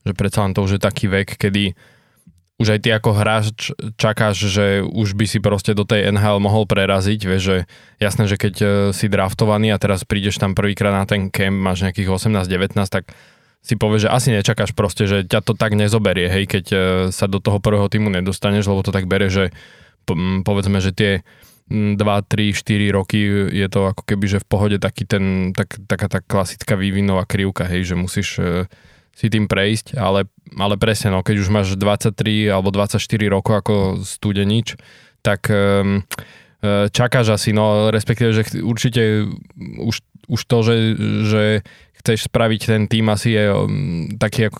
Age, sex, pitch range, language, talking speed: 20-39, male, 100-110 Hz, Slovak, 175 wpm